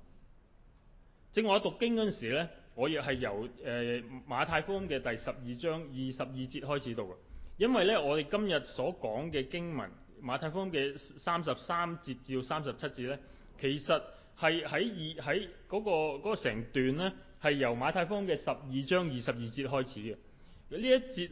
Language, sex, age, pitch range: Chinese, male, 20-39, 120-170 Hz